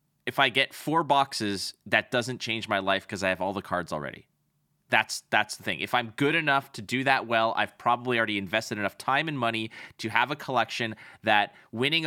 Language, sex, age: English, male, 20-39